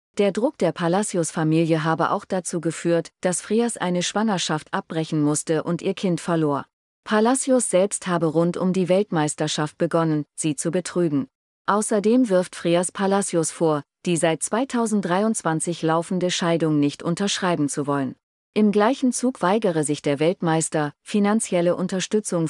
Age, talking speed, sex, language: 40-59, 140 wpm, female, German